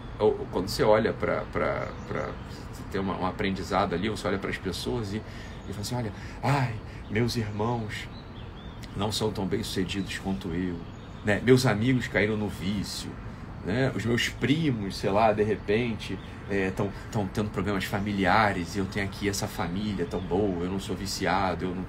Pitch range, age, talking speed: 95-130 Hz, 40-59, 185 wpm